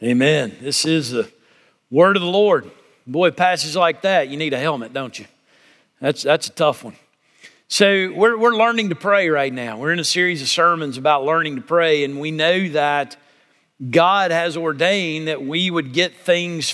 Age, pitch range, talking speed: 50-69, 165-215 Hz, 190 wpm